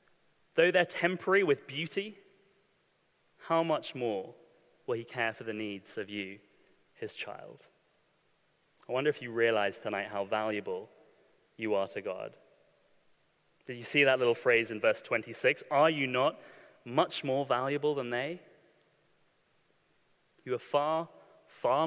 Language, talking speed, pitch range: English, 140 wpm, 125-185 Hz